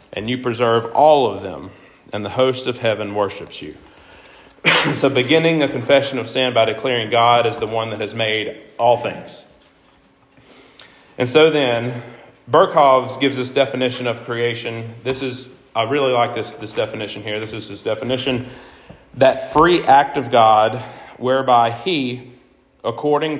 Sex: male